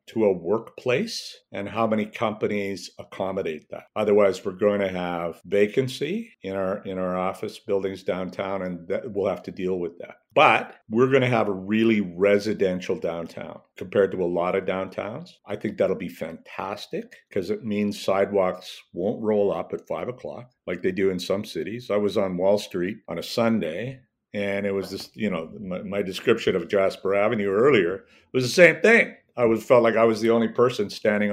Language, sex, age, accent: English, male, 50-69, American